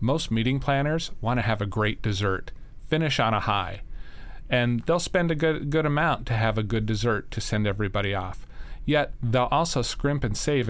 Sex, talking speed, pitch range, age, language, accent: male, 195 wpm, 110-140 Hz, 40-59, English, American